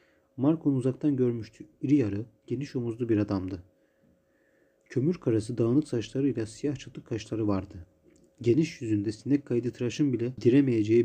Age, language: 40-59, Turkish